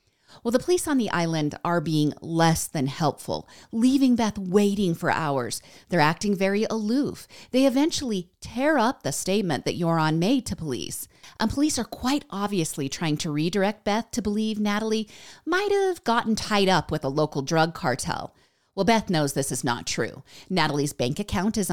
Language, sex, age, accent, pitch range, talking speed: English, female, 40-59, American, 155-225 Hz, 175 wpm